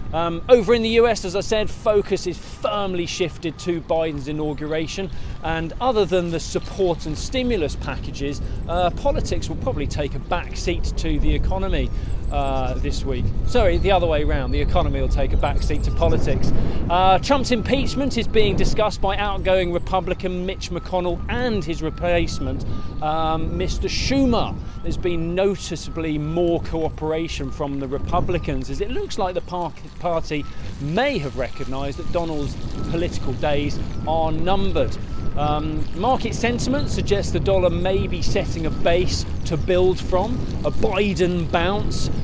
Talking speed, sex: 155 wpm, male